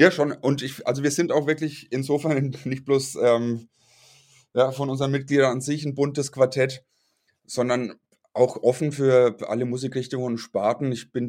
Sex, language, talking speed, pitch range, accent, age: male, German, 165 wpm, 115-135 Hz, German, 20-39